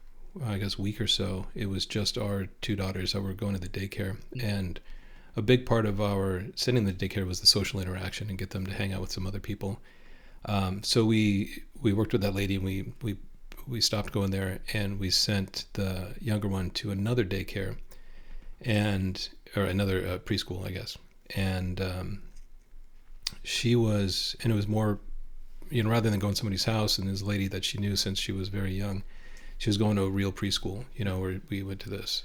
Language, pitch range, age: English, 95-110 Hz, 40-59